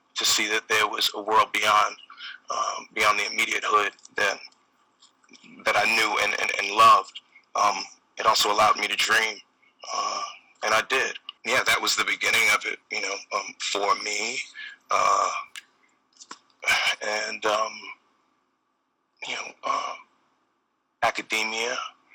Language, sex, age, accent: English, male, 30-49, American